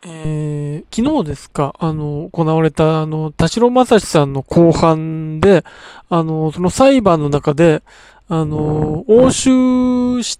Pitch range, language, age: 155-230 Hz, Japanese, 20-39